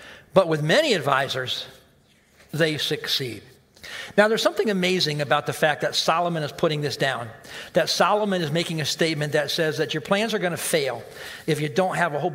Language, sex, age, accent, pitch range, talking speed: English, male, 50-69, American, 150-185 Hz, 190 wpm